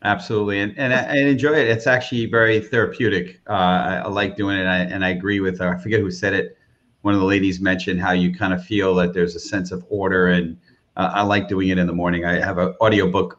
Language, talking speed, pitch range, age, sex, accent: English, 255 wpm, 95-125 Hz, 40-59, male, American